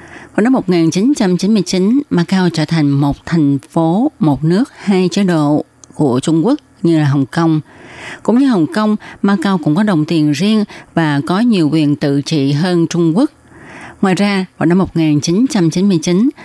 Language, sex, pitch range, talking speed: Vietnamese, female, 155-200 Hz, 165 wpm